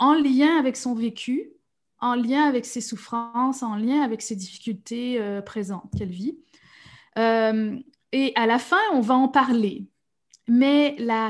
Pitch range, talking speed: 220-255 Hz, 160 wpm